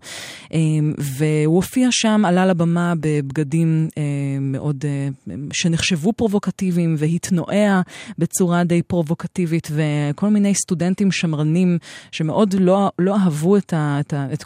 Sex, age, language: female, 20-39, Hebrew